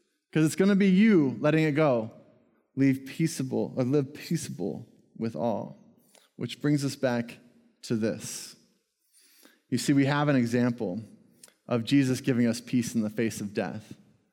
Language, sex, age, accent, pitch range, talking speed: English, male, 20-39, American, 120-180 Hz, 155 wpm